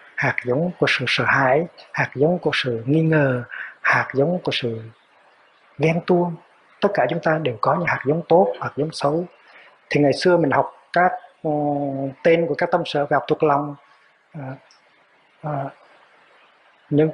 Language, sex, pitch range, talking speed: Vietnamese, male, 140-180 Hz, 165 wpm